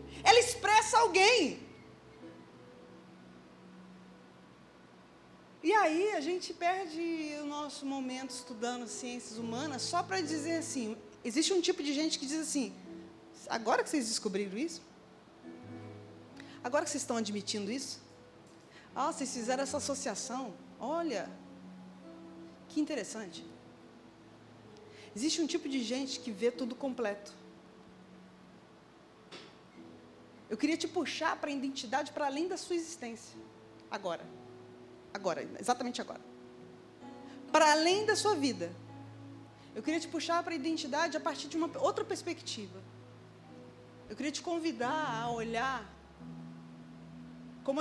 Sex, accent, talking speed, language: female, Brazilian, 120 wpm, Portuguese